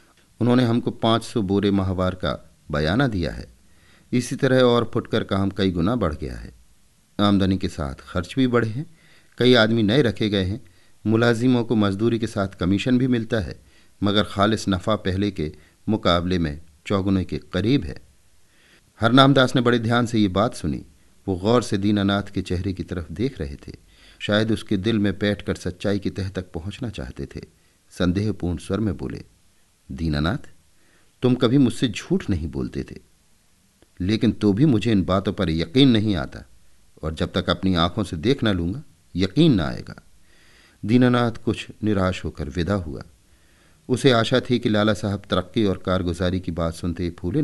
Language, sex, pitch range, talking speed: Hindi, male, 85-110 Hz, 175 wpm